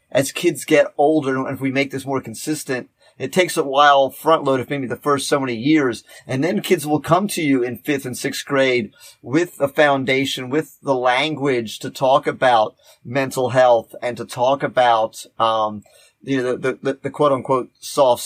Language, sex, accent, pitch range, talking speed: English, male, American, 125-150 Hz, 200 wpm